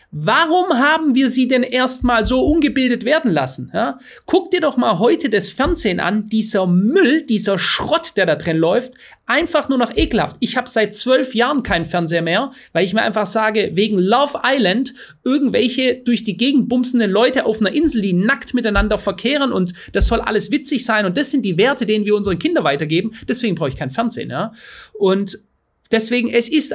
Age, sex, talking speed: 30-49, male, 190 wpm